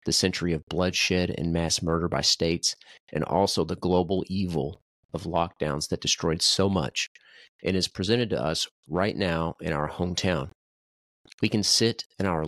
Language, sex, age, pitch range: English, male, 30-49, 85-100 Hz